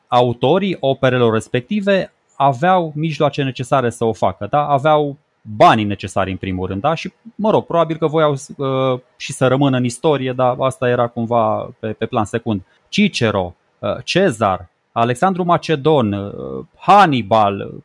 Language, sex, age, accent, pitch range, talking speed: Romanian, male, 20-39, native, 125-175 Hz, 135 wpm